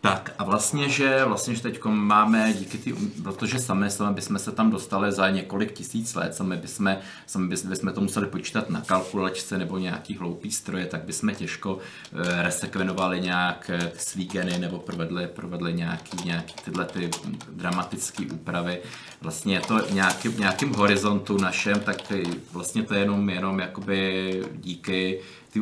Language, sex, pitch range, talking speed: Czech, male, 95-110 Hz, 150 wpm